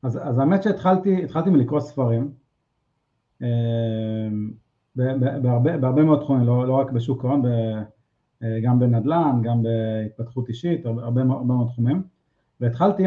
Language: Hebrew